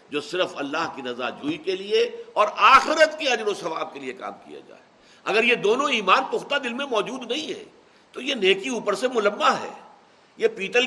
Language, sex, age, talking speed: Urdu, male, 60-79, 210 wpm